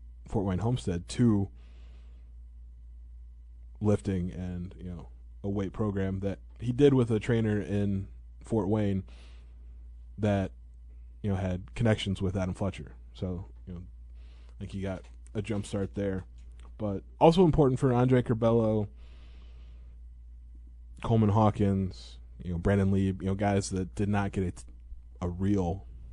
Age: 20-39